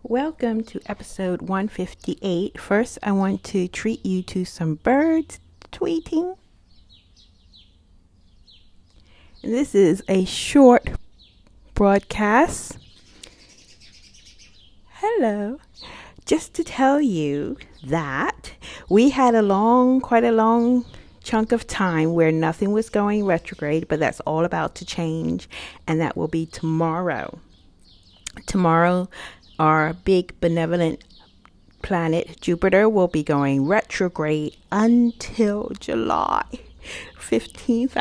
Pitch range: 160-230 Hz